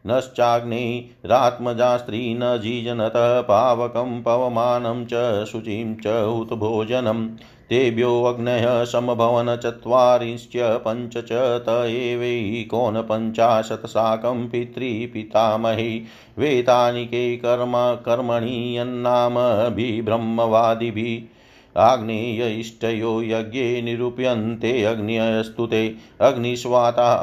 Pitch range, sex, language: 115-120 Hz, male, Hindi